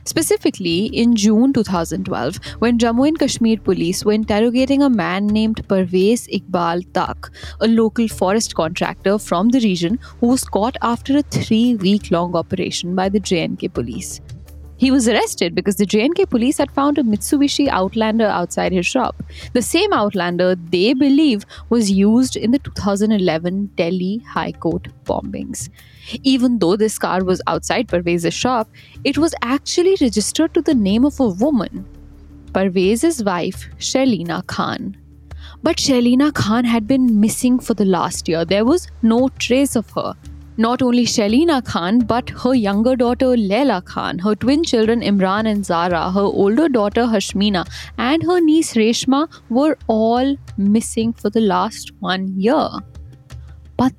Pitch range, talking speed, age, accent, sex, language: 190-260 Hz, 150 wpm, 10-29, Indian, female, English